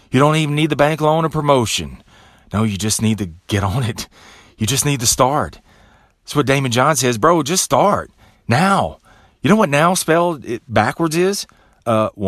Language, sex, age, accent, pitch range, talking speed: English, male, 30-49, American, 105-145 Hz, 195 wpm